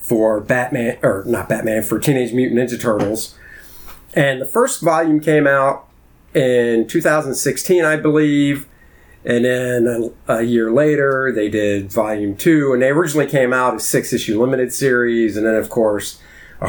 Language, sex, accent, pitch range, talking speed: English, male, American, 105-135 Hz, 160 wpm